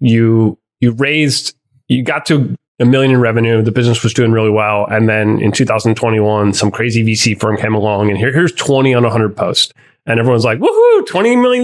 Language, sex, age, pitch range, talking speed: English, male, 30-49, 115-145 Hz, 200 wpm